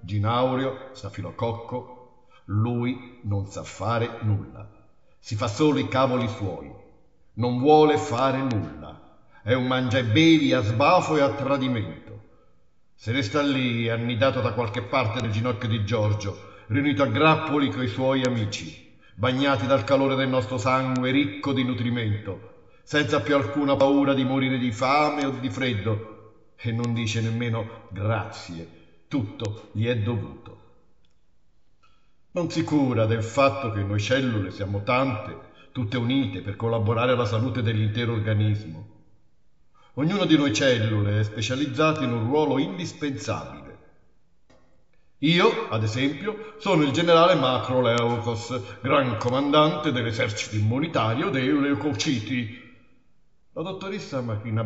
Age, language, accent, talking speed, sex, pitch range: 50-69, Italian, native, 130 wpm, male, 110-135 Hz